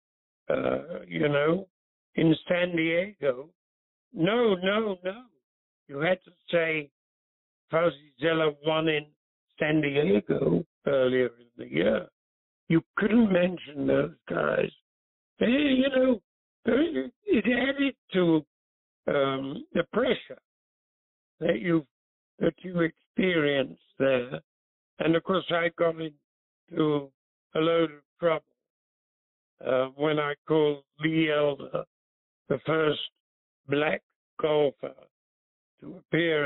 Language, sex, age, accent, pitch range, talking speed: English, male, 60-79, American, 135-170 Hz, 105 wpm